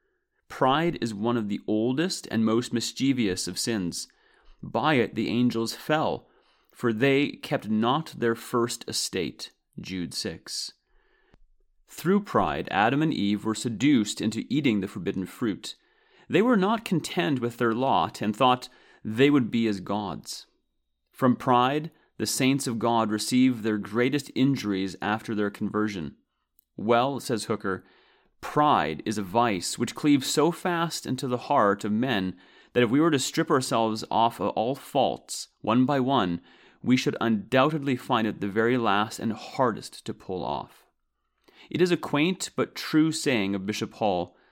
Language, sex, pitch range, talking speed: English, male, 110-145 Hz, 160 wpm